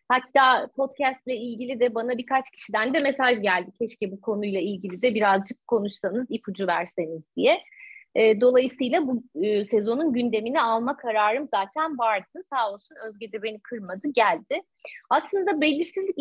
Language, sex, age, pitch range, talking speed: Turkish, female, 30-49, 205-275 Hz, 140 wpm